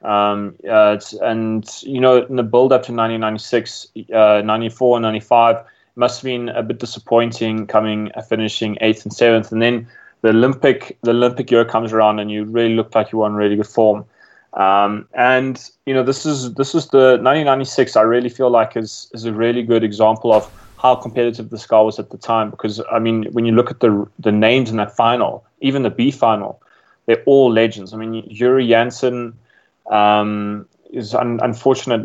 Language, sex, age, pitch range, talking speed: English, male, 20-39, 110-125 Hz, 195 wpm